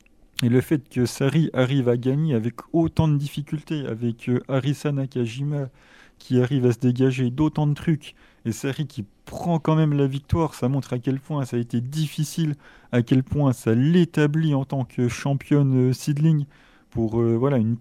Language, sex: French, male